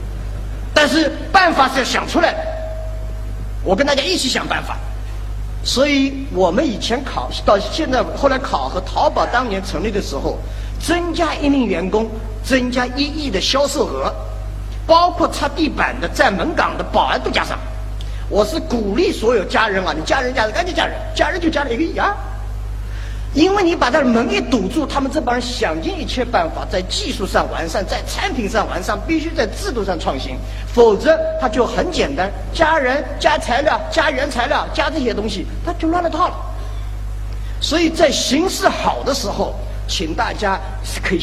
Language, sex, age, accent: Chinese, male, 50-69, native